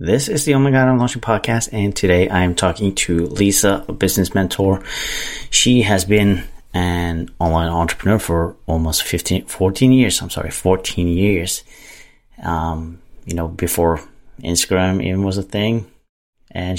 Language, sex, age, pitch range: English, male, 30-49, 80-95 Hz